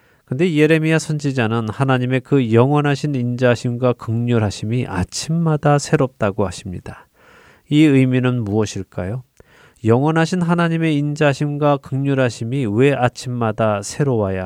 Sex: male